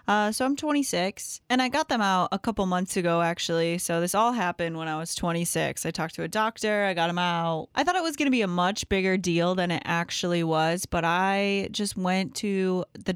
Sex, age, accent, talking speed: female, 20-39, American, 235 wpm